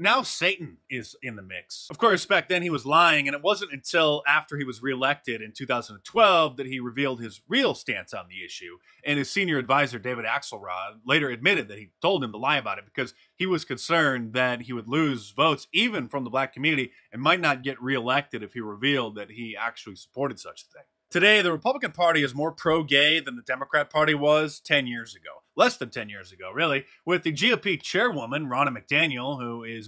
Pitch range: 125-160 Hz